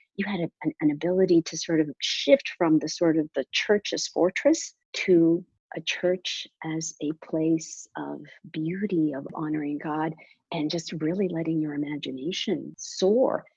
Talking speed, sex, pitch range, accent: 145 wpm, female, 160-210 Hz, American